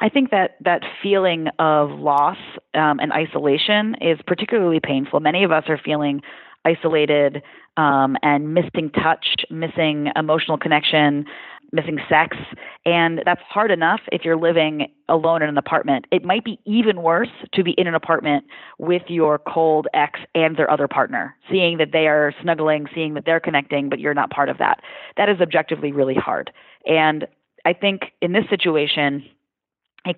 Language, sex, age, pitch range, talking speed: English, female, 30-49, 150-180 Hz, 165 wpm